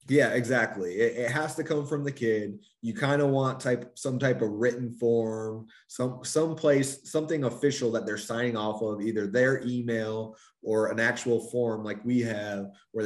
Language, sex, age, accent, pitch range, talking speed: English, male, 20-39, American, 105-125 Hz, 185 wpm